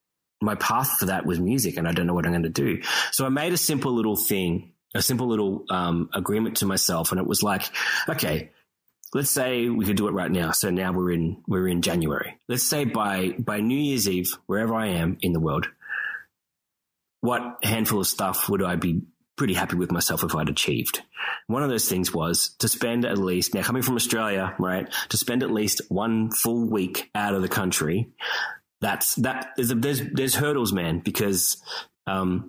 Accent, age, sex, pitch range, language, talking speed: Australian, 30-49, male, 95-120 Hz, English, 205 wpm